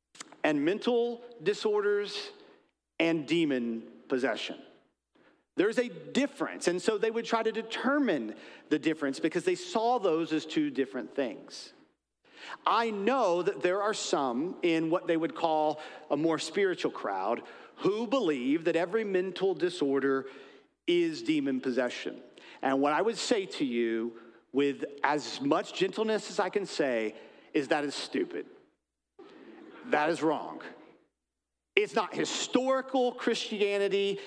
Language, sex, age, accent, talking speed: English, male, 40-59, American, 135 wpm